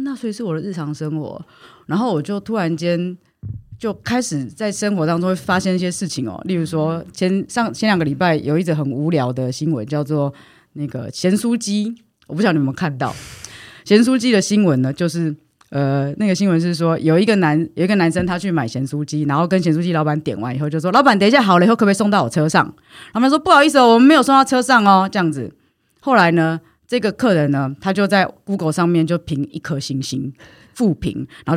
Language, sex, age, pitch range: Chinese, female, 30-49, 160-235 Hz